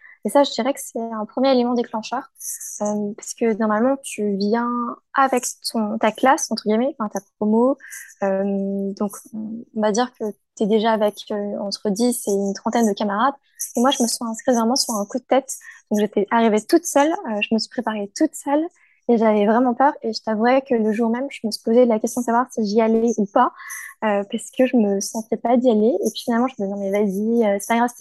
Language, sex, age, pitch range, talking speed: French, female, 20-39, 215-260 Hz, 245 wpm